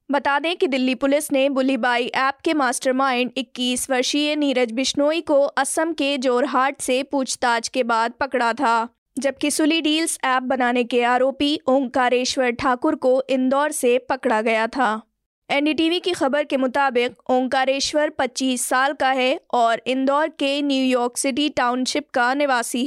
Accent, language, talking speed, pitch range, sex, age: native, Hindi, 150 wpm, 250-290 Hz, female, 20-39